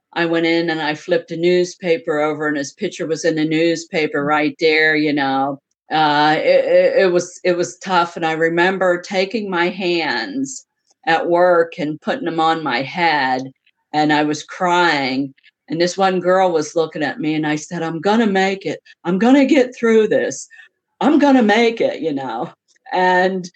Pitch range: 155-185 Hz